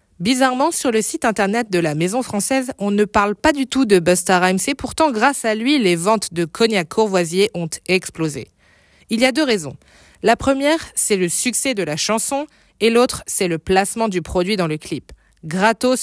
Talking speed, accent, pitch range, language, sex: 200 wpm, French, 175-230 Hz, French, female